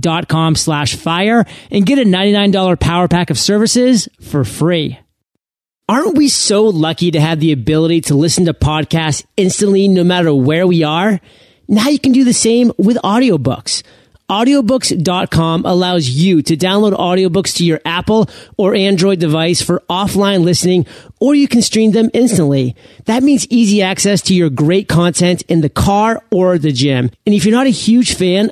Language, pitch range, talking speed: English, 160-215 Hz, 175 wpm